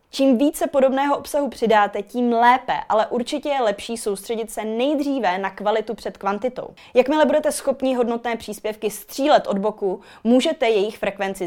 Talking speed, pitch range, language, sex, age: 150 wpm, 200-255 Hz, Czech, female, 20-39